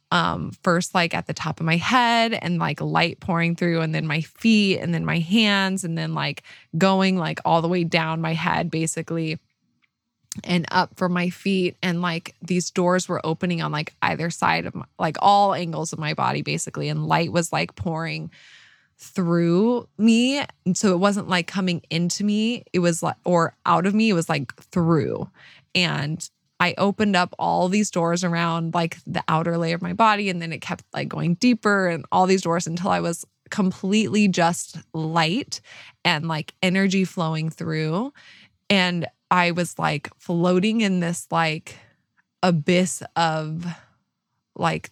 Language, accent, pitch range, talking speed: English, American, 165-185 Hz, 175 wpm